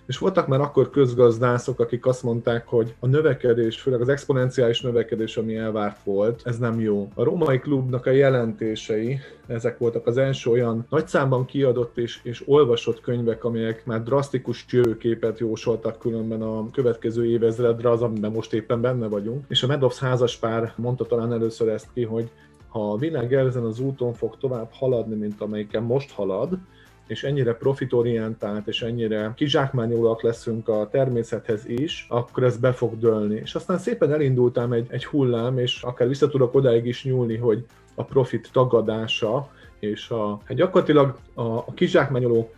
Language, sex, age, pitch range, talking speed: Hungarian, male, 30-49, 115-135 Hz, 160 wpm